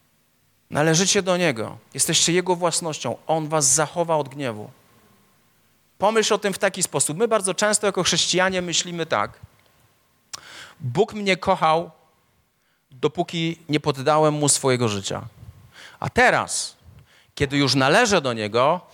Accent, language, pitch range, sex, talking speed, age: native, Polish, 160-215 Hz, male, 125 wpm, 40-59